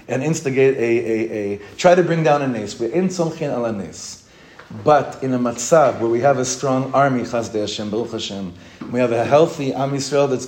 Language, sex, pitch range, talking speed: English, male, 115-150 Hz, 205 wpm